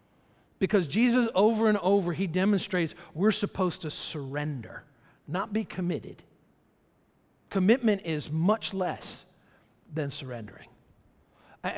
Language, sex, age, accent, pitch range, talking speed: English, male, 50-69, American, 170-210 Hz, 105 wpm